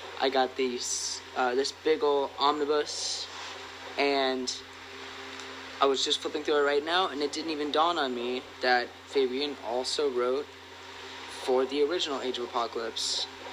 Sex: male